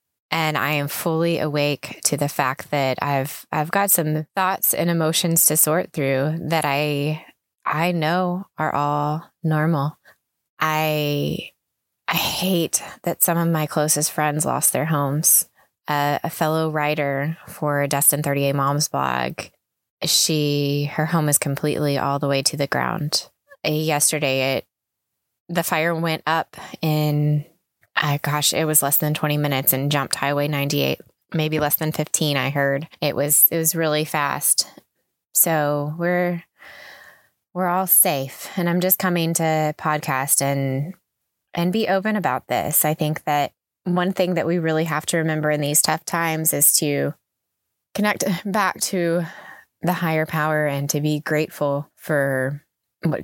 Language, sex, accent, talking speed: English, female, American, 150 wpm